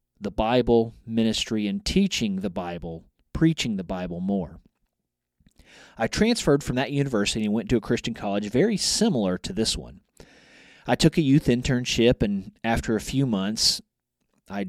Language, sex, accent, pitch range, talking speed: English, male, American, 105-160 Hz, 155 wpm